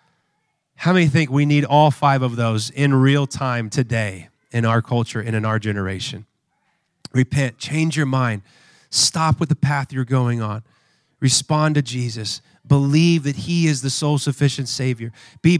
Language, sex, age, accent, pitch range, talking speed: English, male, 30-49, American, 130-160 Hz, 160 wpm